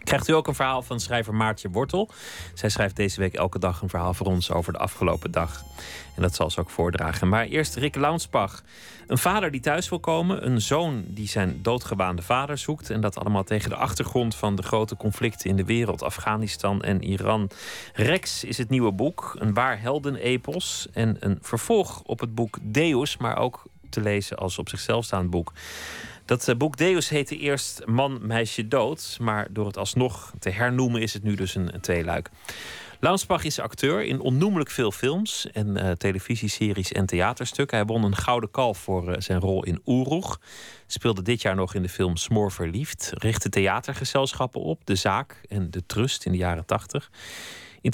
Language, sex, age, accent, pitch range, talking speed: Dutch, male, 40-59, Dutch, 95-125 Hz, 190 wpm